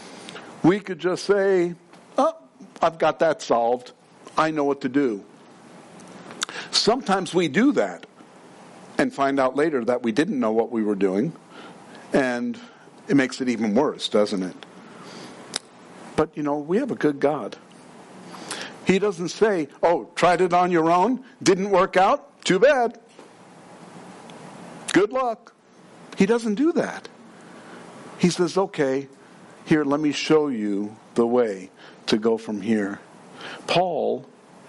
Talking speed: 140 wpm